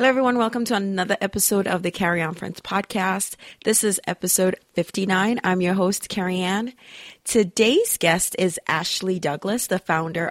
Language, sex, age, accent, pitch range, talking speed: English, female, 30-49, American, 160-200 Hz, 155 wpm